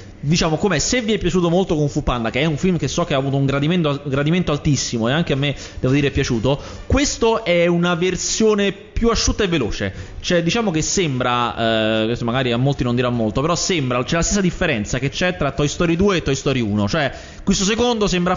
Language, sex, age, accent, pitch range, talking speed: Italian, male, 20-39, native, 120-175 Hz, 230 wpm